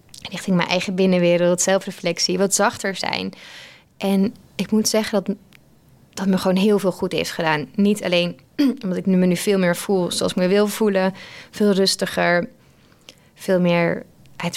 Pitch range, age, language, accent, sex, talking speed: 180-205 Hz, 20-39, Dutch, Dutch, female, 165 wpm